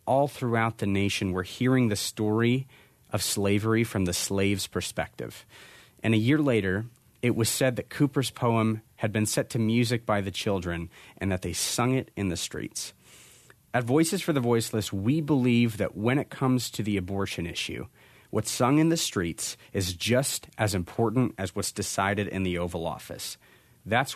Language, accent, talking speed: English, American, 180 wpm